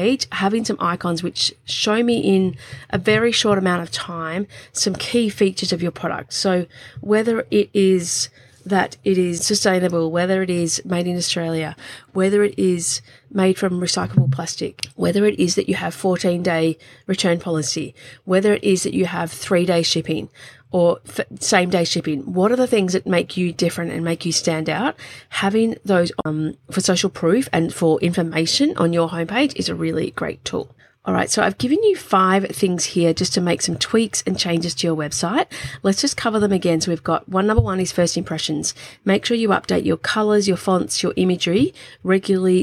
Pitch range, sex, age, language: 165-195 Hz, female, 30-49, English